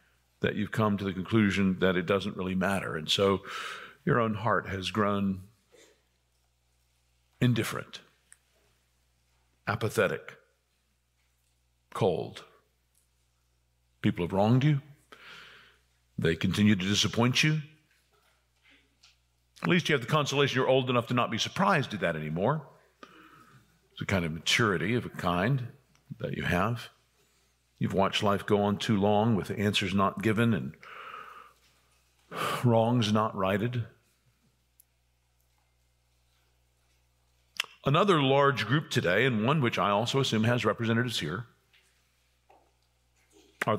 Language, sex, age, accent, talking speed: English, male, 50-69, American, 120 wpm